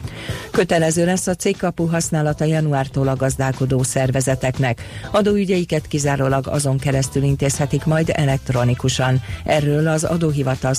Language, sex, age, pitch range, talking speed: Hungarian, female, 40-59, 135-160 Hz, 105 wpm